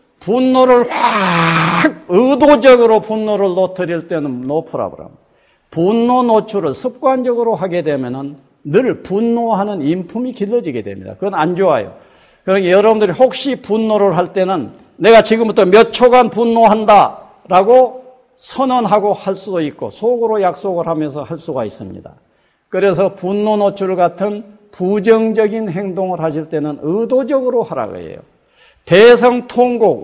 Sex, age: male, 50-69